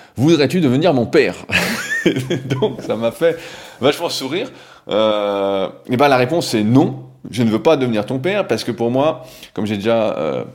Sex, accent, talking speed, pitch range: male, French, 195 wpm, 95-125 Hz